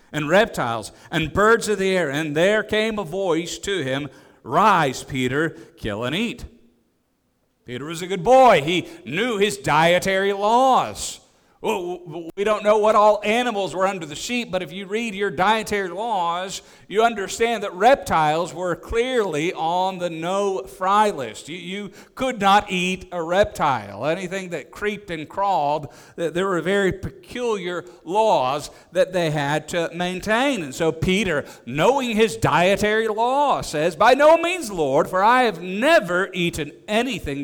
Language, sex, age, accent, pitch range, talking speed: English, male, 50-69, American, 140-200 Hz, 155 wpm